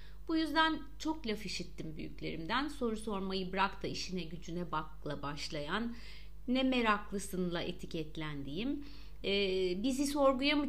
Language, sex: Turkish, female